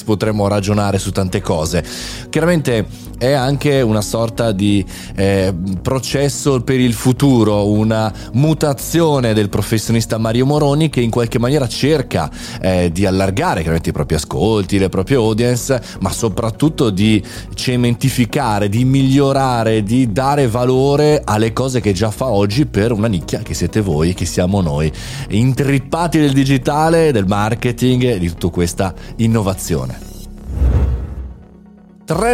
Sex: male